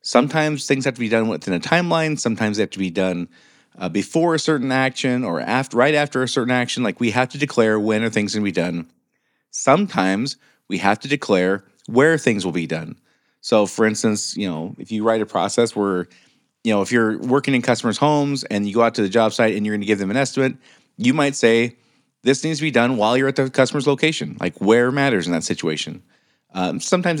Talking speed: 235 wpm